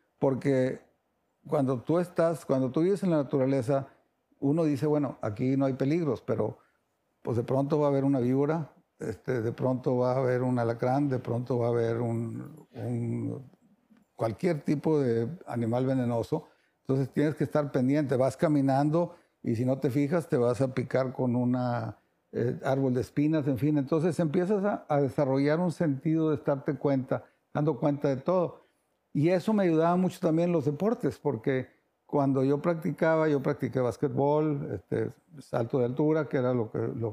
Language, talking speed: Spanish, 175 wpm